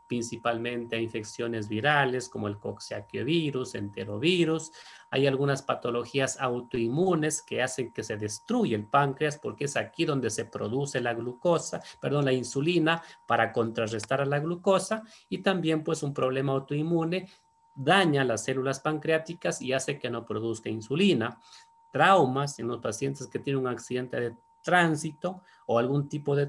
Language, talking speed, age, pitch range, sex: Spanish, 145 wpm, 30-49, 120-175 Hz, male